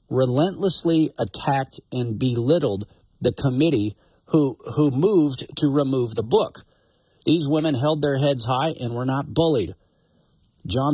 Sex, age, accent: male, 50-69, American